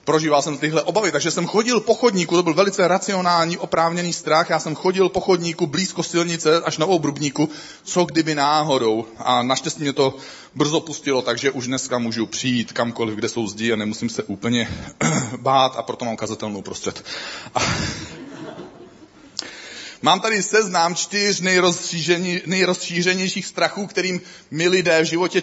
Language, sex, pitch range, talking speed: Czech, male, 155-185 Hz, 150 wpm